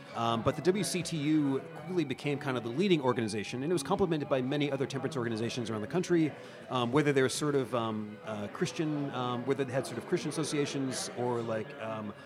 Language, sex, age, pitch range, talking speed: English, male, 30-49, 115-155 Hz, 210 wpm